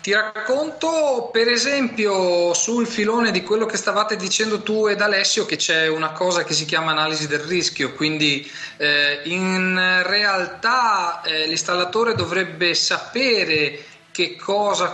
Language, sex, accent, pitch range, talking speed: Italian, male, native, 155-200 Hz, 135 wpm